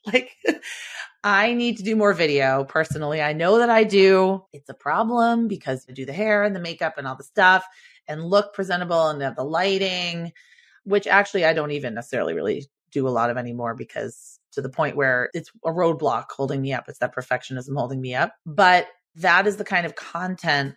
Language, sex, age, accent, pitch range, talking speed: English, female, 30-49, American, 140-185 Hz, 200 wpm